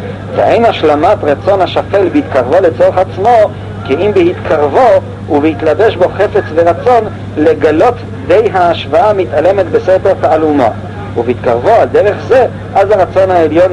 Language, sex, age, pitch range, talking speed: Hebrew, male, 50-69, 110-170 Hz, 120 wpm